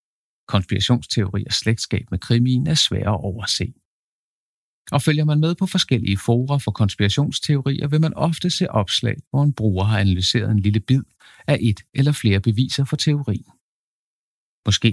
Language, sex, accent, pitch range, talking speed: Danish, male, native, 100-130 Hz, 165 wpm